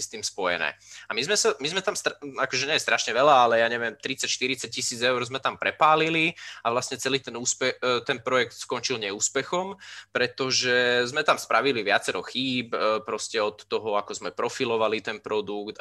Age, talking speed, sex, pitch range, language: 20-39, 165 wpm, male, 115-140 Hz, Slovak